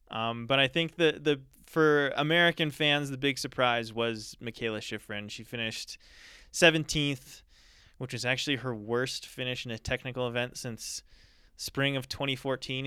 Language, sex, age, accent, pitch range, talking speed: English, male, 20-39, American, 115-140 Hz, 150 wpm